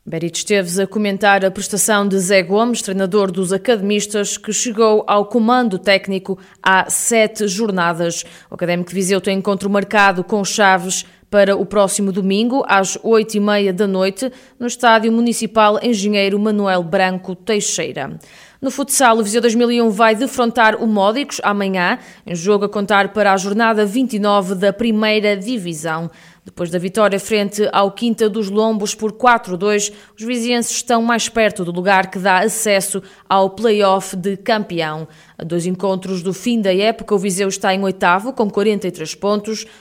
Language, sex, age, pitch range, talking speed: Portuguese, female, 20-39, 190-225 Hz, 160 wpm